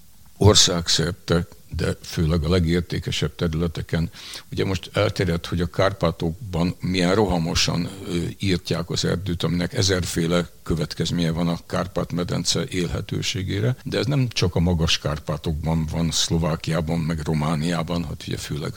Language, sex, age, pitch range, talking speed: Hungarian, male, 60-79, 85-100 Hz, 120 wpm